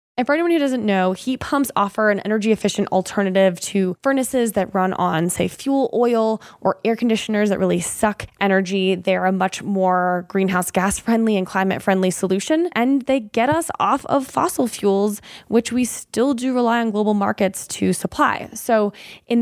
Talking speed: 175 wpm